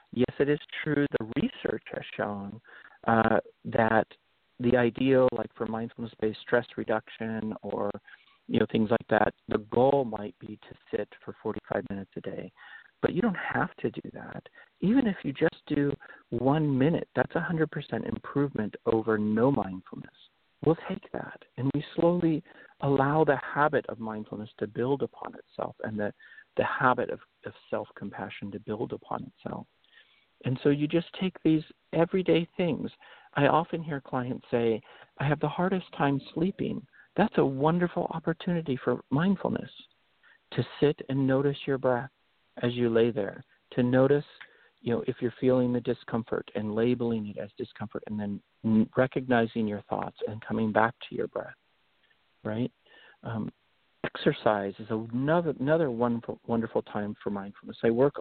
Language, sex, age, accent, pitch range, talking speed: English, male, 50-69, American, 110-145 Hz, 160 wpm